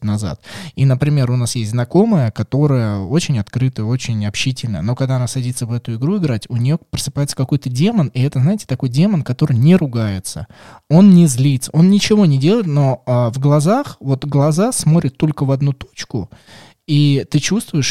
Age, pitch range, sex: 20-39, 115-145 Hz, male